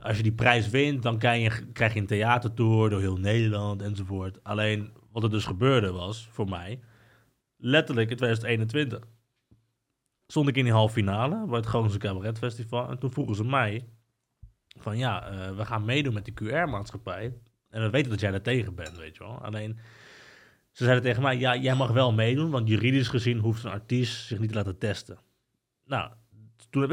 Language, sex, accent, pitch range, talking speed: Dutch, male, Dutch, 105-130 Hz, 195 wpm